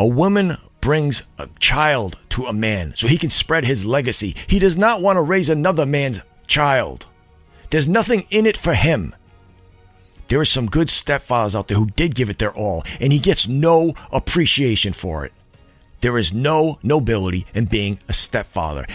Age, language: 50-69, English